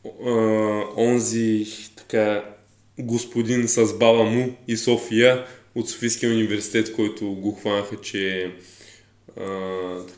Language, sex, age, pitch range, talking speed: Bulgarian, male, 20-39, 100-110 Hz, 95 wpm